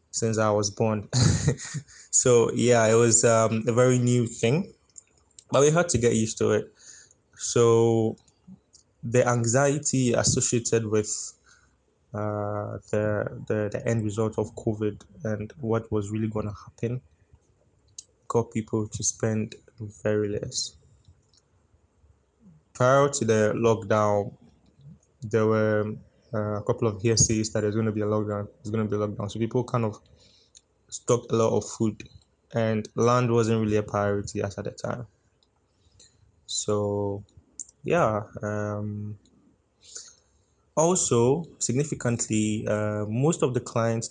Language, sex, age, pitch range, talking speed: English, male, 20-39, 105-115 Hz, 130 wpm